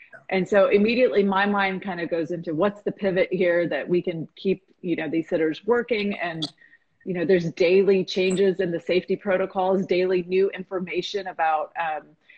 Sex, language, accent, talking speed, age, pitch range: female, English, American, 180 wpm, 30-49, 170-210 Hz